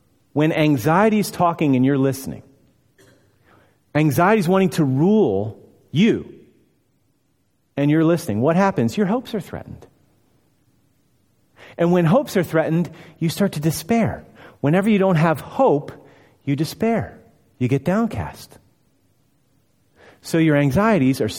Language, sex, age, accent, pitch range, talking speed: English, male, 40-59, American, 105-155 Hz, 125 wpm